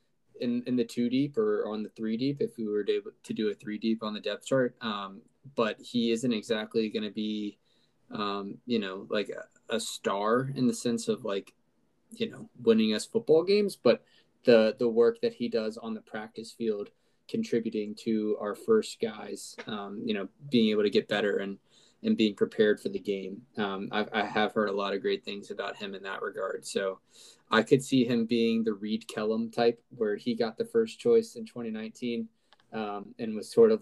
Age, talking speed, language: 20-39, 210 wpm, English